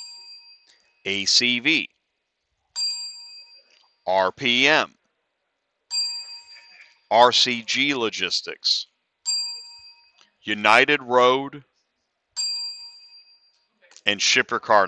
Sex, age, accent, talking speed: male, 40-59, American, 40 wpm